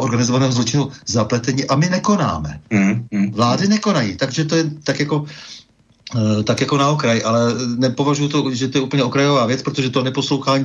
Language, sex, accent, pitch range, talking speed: Czech, male, native, 125-150 Hz, 165 wpm